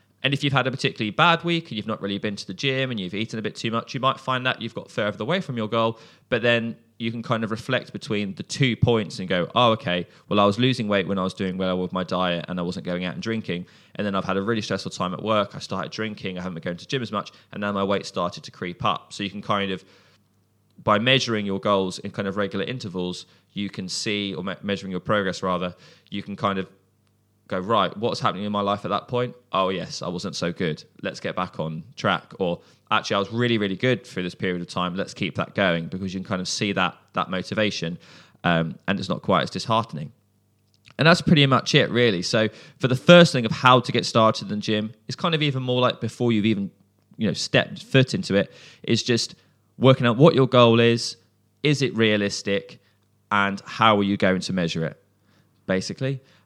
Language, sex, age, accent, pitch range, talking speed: English, male, 20-39, British, 95-120 Hz, 245 wpm